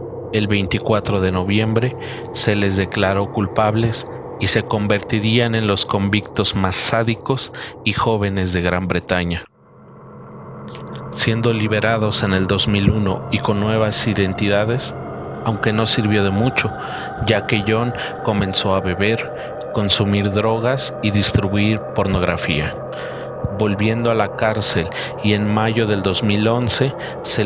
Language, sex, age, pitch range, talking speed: Spanish, male, 40-59, 95-115 Hz, 120 wpm